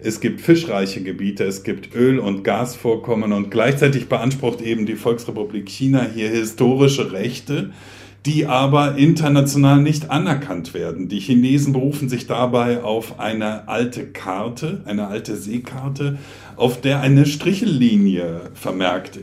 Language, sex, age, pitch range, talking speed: German, male, 50-69, 100-130 Hz, 130 wpm